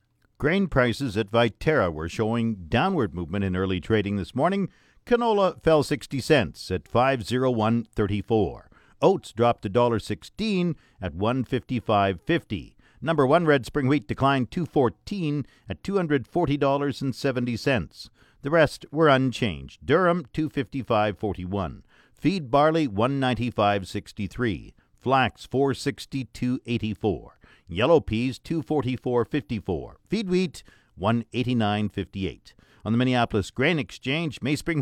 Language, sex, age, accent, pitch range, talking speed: English, male, 50-69, American, 105-150 Hz, 100 wpm